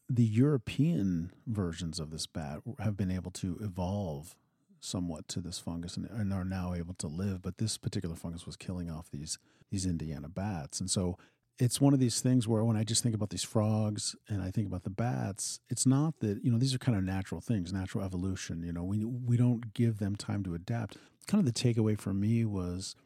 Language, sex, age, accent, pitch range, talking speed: English, male, 40-59, American, 95-120 Hz, 215 wpm